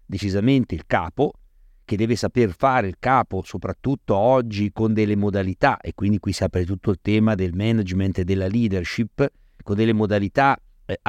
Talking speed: 170 wpm